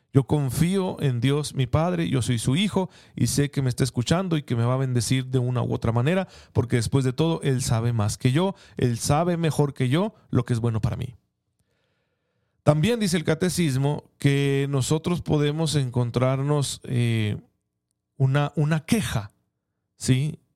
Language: Spanish